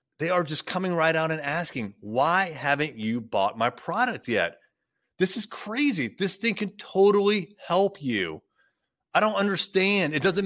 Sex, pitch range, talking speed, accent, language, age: male, 130-195 Hz, 165 wpm, American, English, 30-49